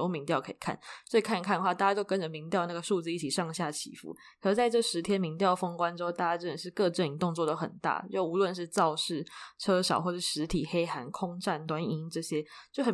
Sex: female